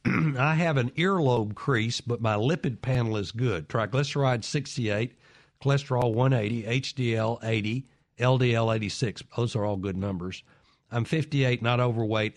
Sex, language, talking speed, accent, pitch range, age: male, English, 135 wpm, American, 110-140 Hz, 60-79